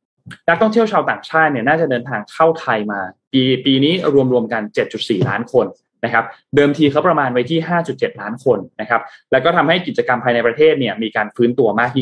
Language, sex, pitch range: Thai, male, 115-155 Hz